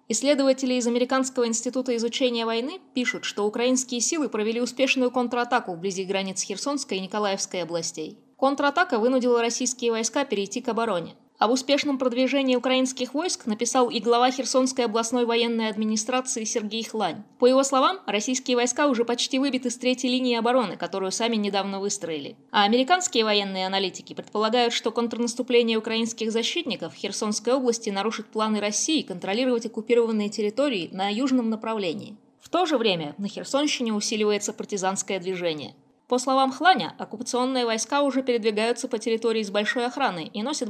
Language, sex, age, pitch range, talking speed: Russian, female, 20-39, 210-255 Hz, 145 wpm